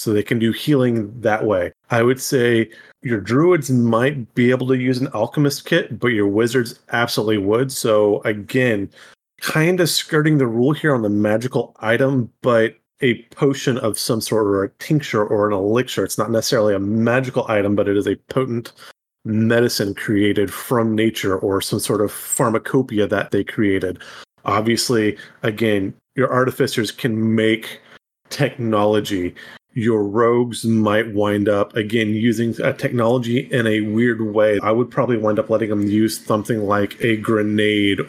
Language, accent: English, American